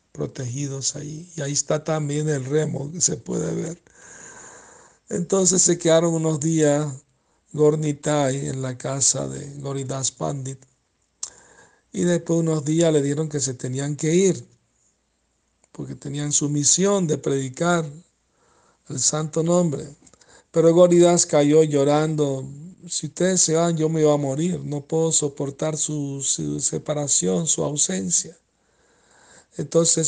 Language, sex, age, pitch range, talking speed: Spanish, male, 60-79, 145-170 Hz, 135 wpm